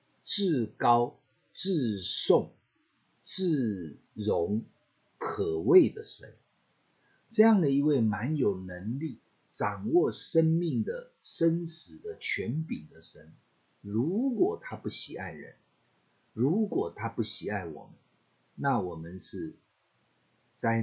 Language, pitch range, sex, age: Chinese, 100-160 Hz, male, 50-69